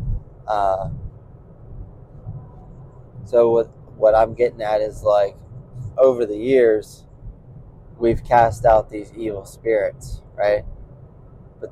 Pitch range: 110-130 Hz